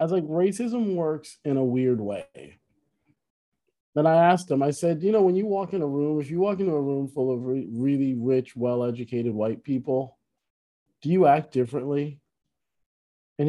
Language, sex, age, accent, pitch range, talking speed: English, male, 40-59, American, 135-175 Hz, 180 wpm